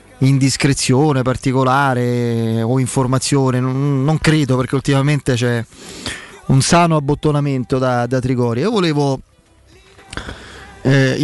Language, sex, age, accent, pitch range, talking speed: Italian, male, 30-49, native, 130-150 Hz, 100 wpm